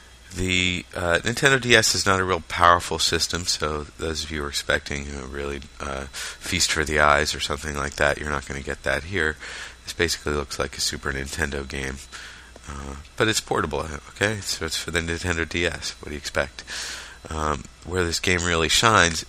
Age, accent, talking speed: 30-49, American, 205 wpm